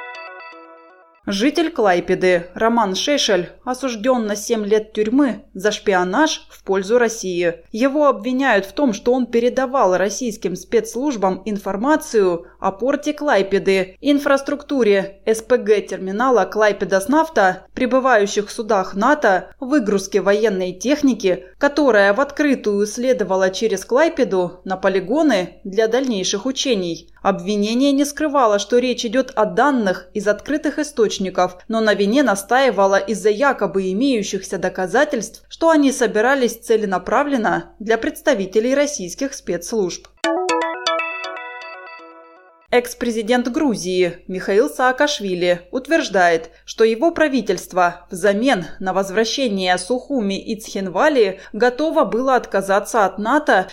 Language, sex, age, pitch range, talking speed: Russian, female, 20-39, 190-260 Hz, 105 wpm